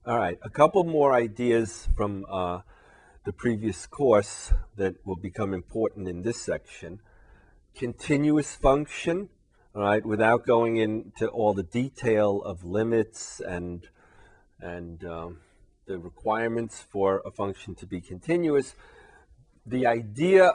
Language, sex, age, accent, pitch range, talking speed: English, male, 40-59, American, 90-115 Hz, 125 wpm